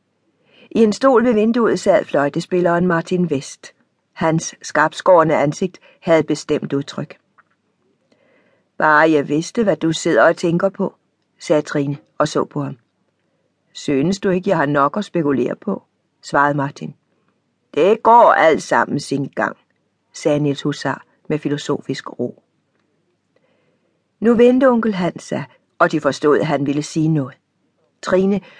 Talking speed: 140 wpm